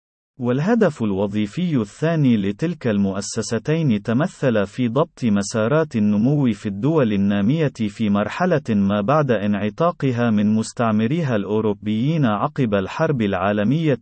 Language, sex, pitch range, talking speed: Arabic, male, 105-145 Hz, 105 wpm